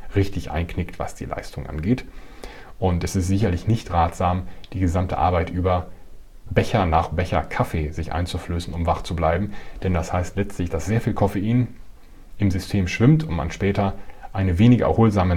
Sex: male